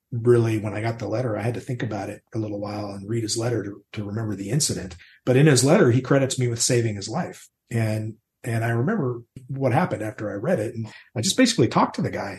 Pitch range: 110-130 Hz